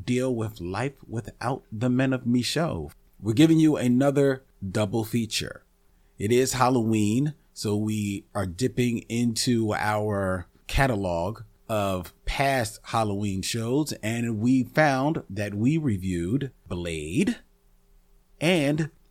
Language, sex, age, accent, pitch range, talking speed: English, male, 40-59, American, 100-135 Hz, 115 wpm